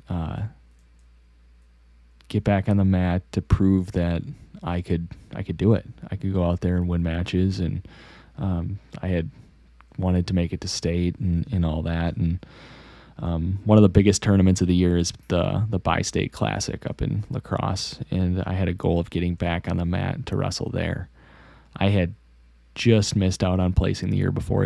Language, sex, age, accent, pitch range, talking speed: English, male, 20-39, American, 85-95 Hz, 190 wpm